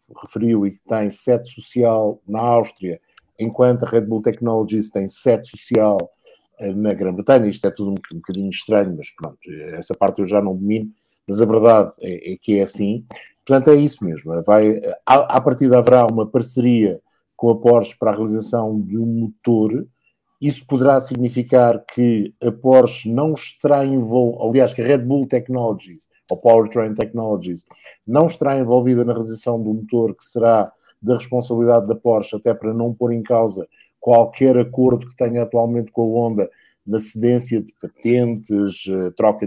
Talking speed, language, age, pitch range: 170 wpm, English, 50-69, 105-125 Hz